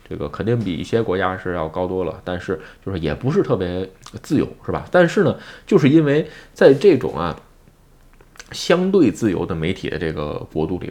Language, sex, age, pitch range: Chinese, male, 20-39, 95-145 Hz